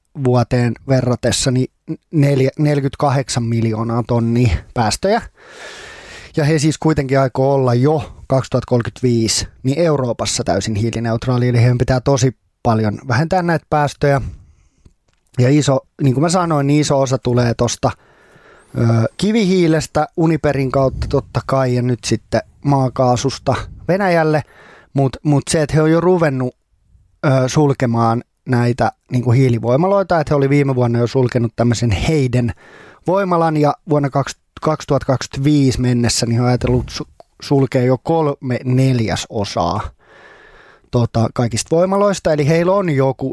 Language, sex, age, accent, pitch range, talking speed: Finnish, male, 20-39, native, 120-150 Hz, 125 wpm